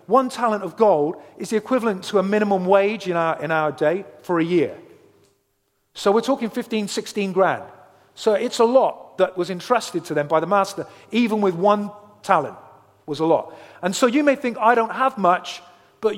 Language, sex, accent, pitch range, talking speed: English, male, British, 175-255 Hz, 205 wpm